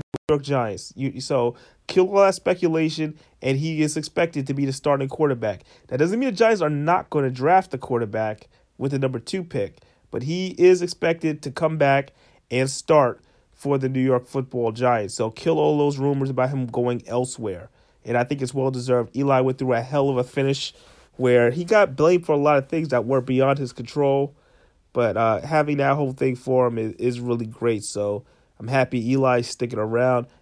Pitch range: 120-150 Hz